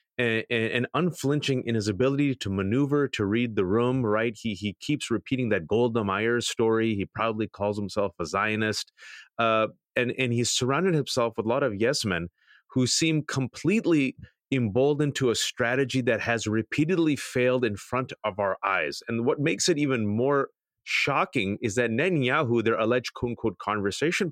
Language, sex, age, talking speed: English, male, 30-49, 165 wpm